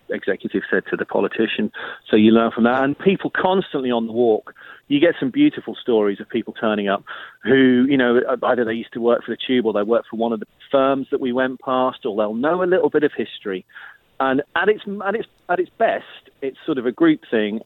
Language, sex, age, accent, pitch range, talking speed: English, male, 40-59, British, 110-150 Hz, 235 wpm